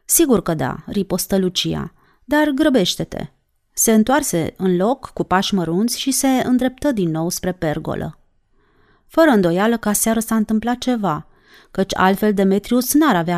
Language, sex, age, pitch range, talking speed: Romanian, female, 30-49, 175-245 Hz, 150 wpm